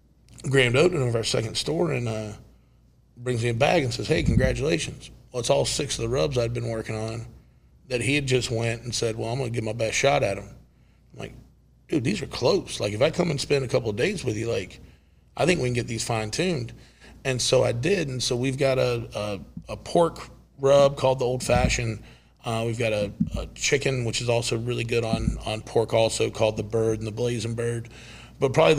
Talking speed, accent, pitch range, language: 235 wpm, American, 110-130 Hz, English